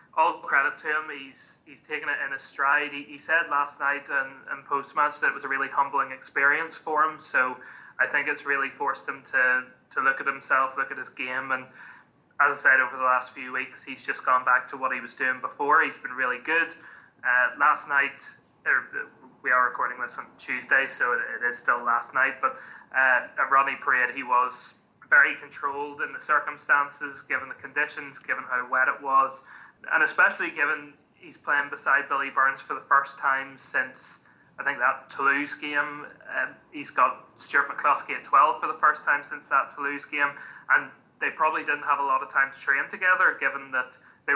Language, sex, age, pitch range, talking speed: English, male, 20-39, 130-150 Hz, 205 wpm